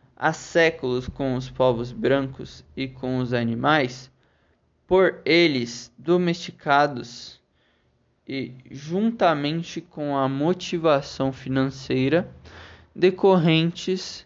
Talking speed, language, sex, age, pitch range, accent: 85 wpm, Portuguese, male, 20-39, 125-165 Hz, Brazilian